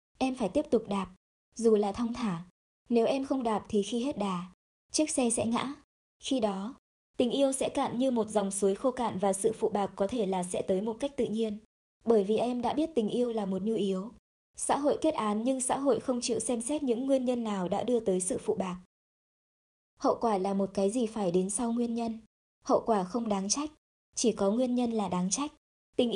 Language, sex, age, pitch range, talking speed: Vietnamese, male, 20-39, 200-250 Hz, 235 wpm